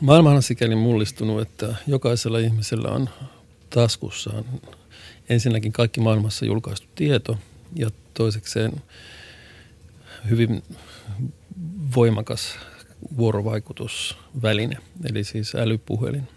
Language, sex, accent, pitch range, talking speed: Finnish, male, native, 105-120 Hz, 80 wpm